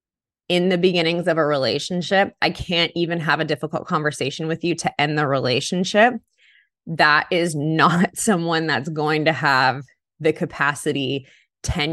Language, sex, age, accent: English, female, 20-39, American